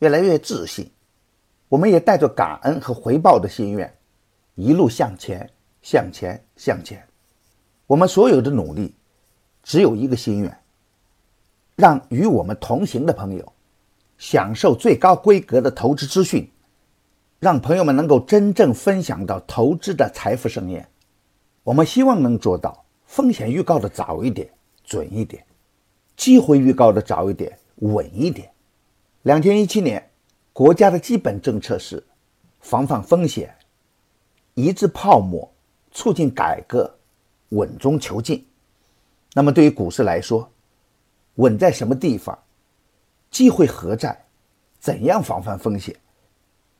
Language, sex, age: Chinese, male, 50-69